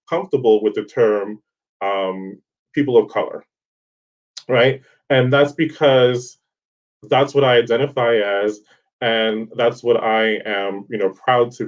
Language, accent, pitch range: English, American, 110-140 Hz